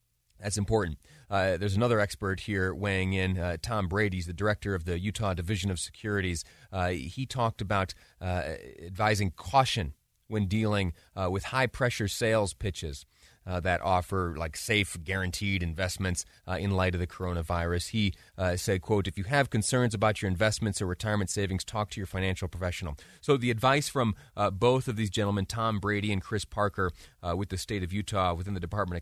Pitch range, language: 90-115 Hz, English